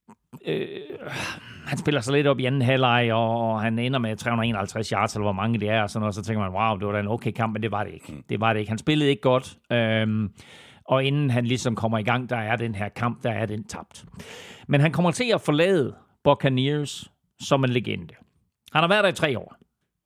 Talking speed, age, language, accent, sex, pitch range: 245 wpm, 40-59, Danish, native, male, 110-140 Hz